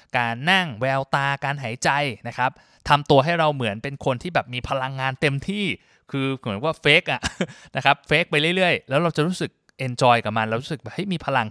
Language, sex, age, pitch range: Thai, male, 20-39, 115-145 Hz